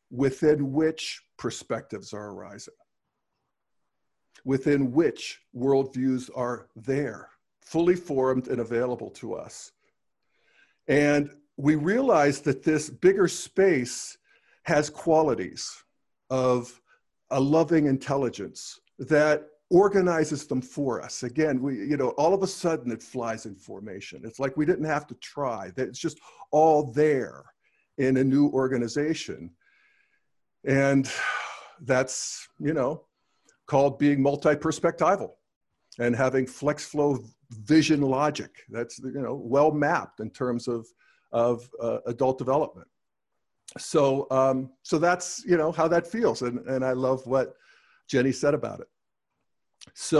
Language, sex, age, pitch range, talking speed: English, male, 50-69, 125-155 Hz, 125 wpm